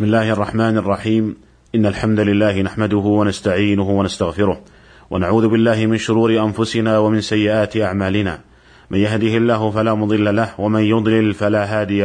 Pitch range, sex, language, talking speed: 105-115 Hz, male, Arabic, 140 wpm